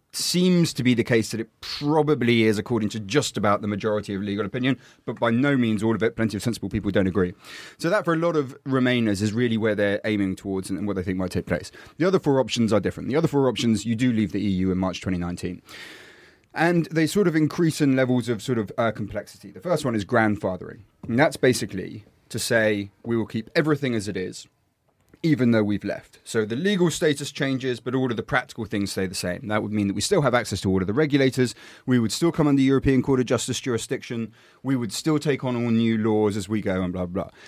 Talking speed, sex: 245 wpm, male